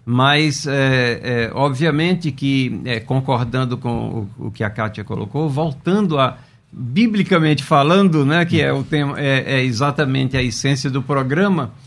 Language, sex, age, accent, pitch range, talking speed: Portuguese, male, 50-69, Brazilian, 125-165 Hz, 150 wpm